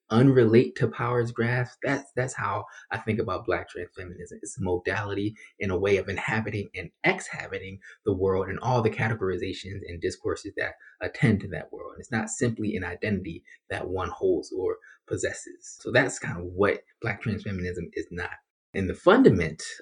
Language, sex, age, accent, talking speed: English, male, 20-39, American, 180 wpm